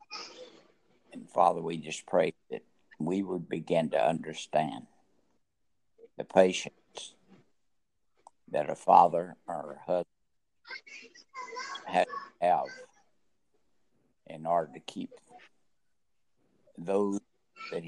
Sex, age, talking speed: male, 60-79, 95 wpm